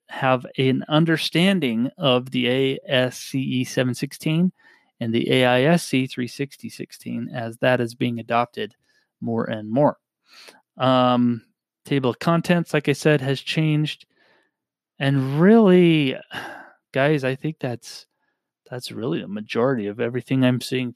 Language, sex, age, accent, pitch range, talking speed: English, male, 30-49, American, 120-145 Hz, 125 wpm